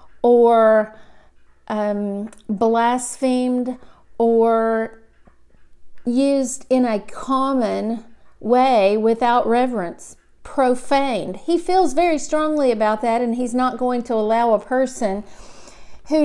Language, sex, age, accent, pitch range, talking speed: English, female, 40-59, American, 230-265 Hz, 100 wpm